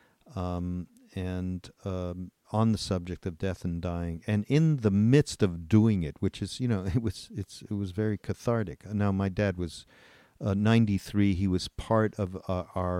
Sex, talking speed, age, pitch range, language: male, 180 wpm, 50-69, 90-110 Hz, English